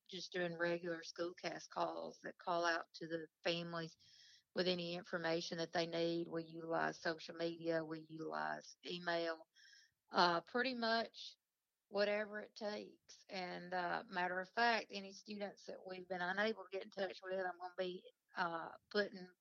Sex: female